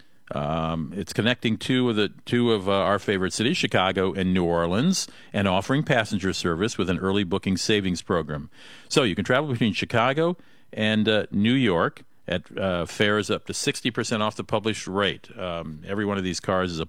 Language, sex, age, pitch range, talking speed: English, male, 50-69, 95-115 Hz, 190 wpm